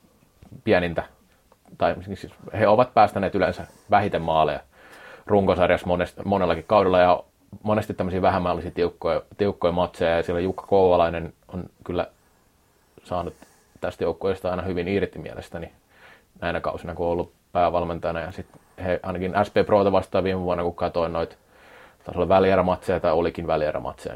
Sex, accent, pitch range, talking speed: male, native, 85-105 Hz, 135 wpm